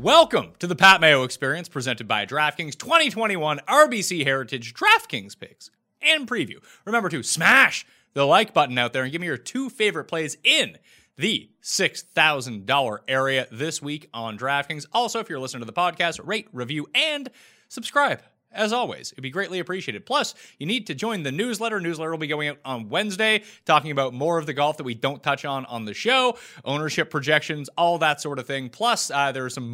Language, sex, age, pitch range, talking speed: English, male, 30-49, 140-200 Hz, 195 wpm